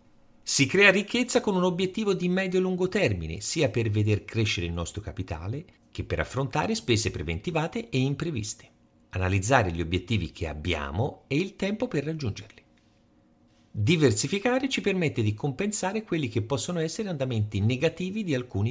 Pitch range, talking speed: 100-165 Hz, 150 wpm